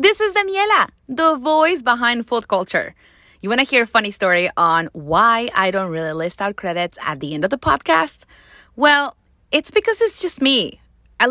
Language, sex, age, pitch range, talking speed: English, female, 30-49, 205-335 Hz, 190 wpm